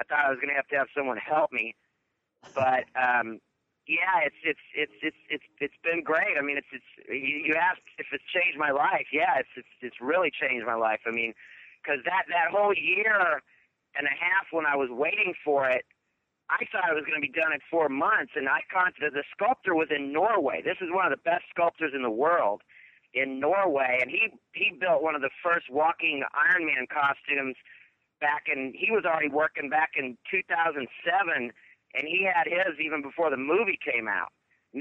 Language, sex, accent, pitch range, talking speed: English, male, American, 140-180 Hz, 210 wpm